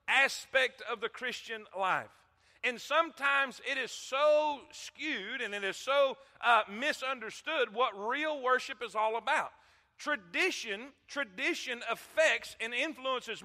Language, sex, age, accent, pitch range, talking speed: English, male, 40-59, American, 245-295 Hz, 125 wpm